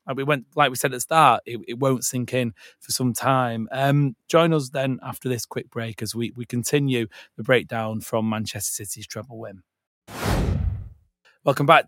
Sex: male